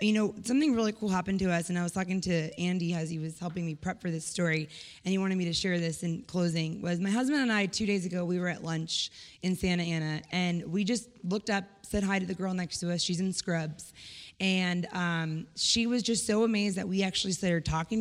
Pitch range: 180-230 Hz